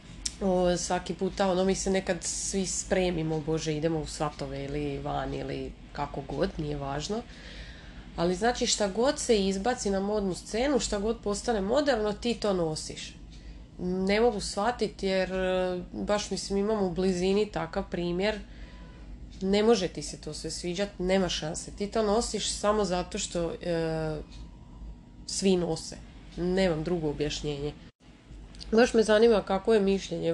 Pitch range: 160-195 Hz